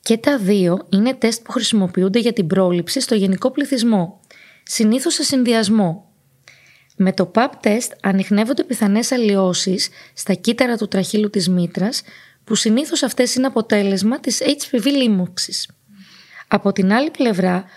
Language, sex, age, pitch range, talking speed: Greek, female, 20-39, 190-255 Hz, 135 wpm